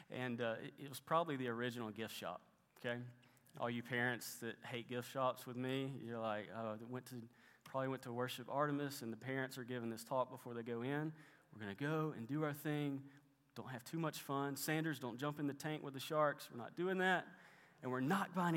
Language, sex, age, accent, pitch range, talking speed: English, male, 30-49, American, 115-140 Hz, 225 wpm